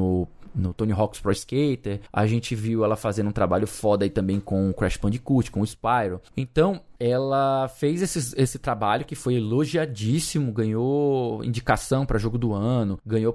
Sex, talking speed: male, 170 wpm